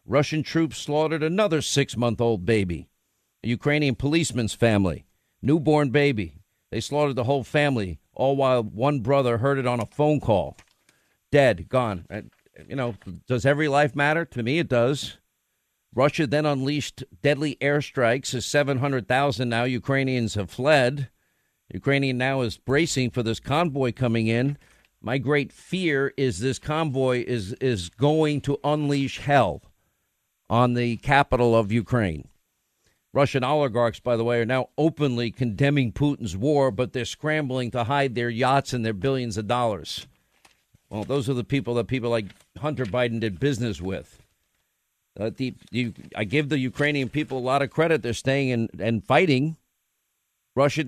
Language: English